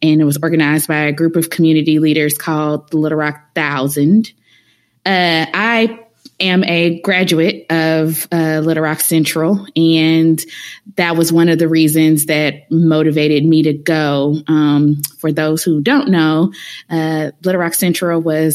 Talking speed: 155 wpm